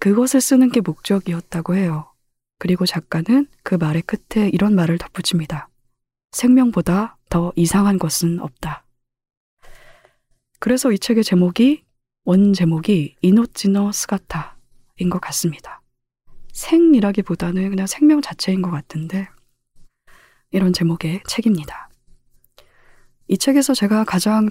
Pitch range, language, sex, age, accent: 165-220 Hz, Korean, female, 20-39, native